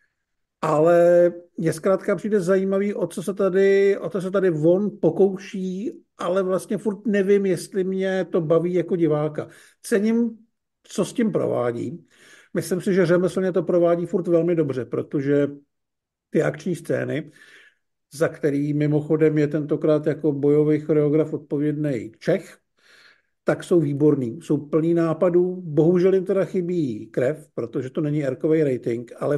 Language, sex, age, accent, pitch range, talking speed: Czech, male, 50-69, native, 155-180 Hz, 145 wpm